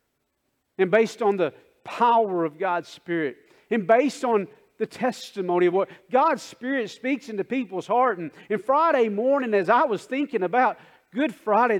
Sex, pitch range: male, 155-205 Hz